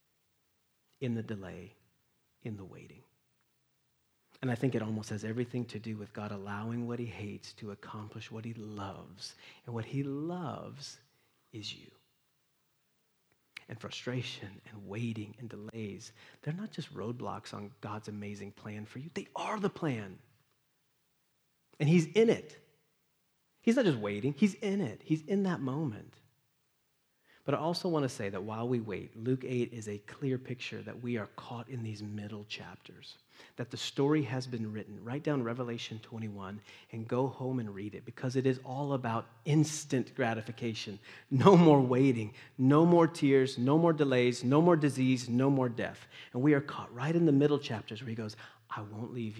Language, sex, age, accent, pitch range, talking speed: English, male, 40-59, American, 105-135 Hz, 175 wpm